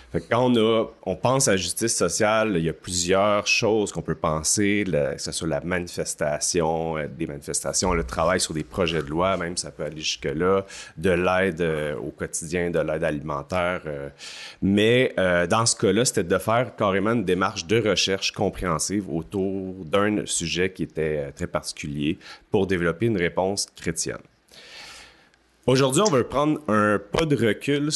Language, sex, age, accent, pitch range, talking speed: French, male, 30-49, Canadian, 85-115 Hz, 180 wpm